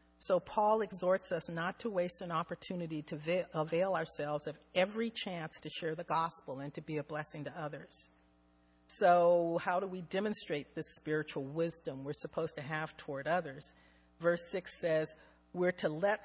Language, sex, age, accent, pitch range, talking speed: English, female, 50-69, American, 140-180 Hz, 170 wpm